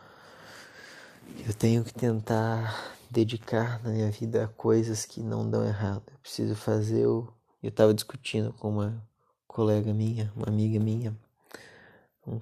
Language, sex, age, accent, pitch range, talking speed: Portuguese, male, 20-39, Brazilian, 110-120 Hz, 140 wpm